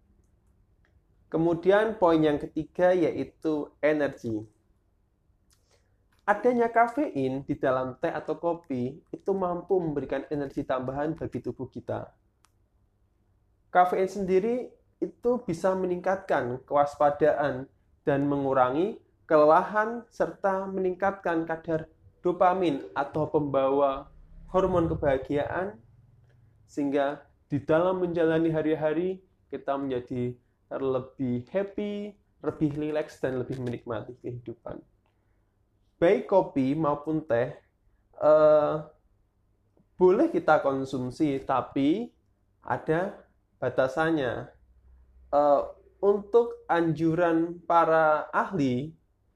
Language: Indonesian